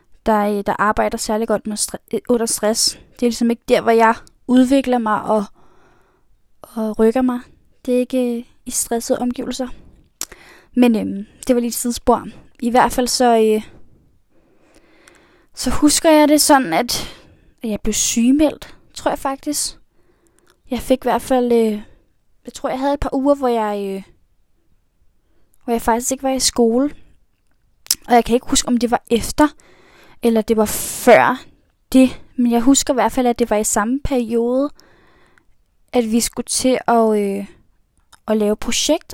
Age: 10-29